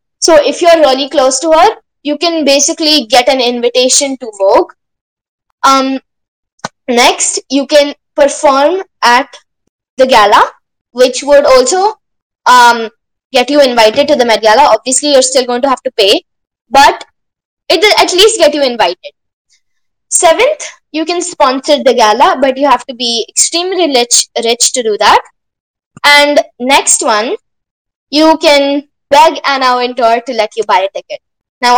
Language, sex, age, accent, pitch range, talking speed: English, female, 20-39, Indian, 250-320 Hz, 160 wpm